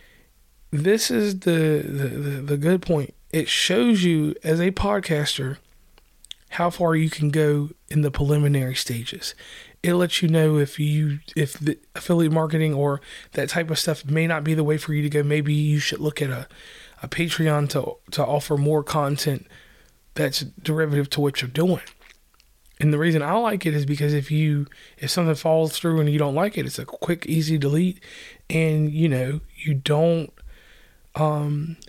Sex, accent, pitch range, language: male, American, 145-170 Hz, English